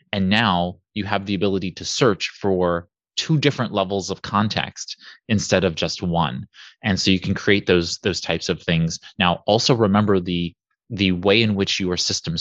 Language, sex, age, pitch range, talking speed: English, male, 20-39, 90-105 Hz, 185 wpm